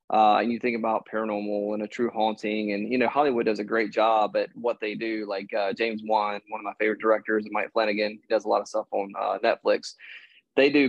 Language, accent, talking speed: English, American, 240 wpm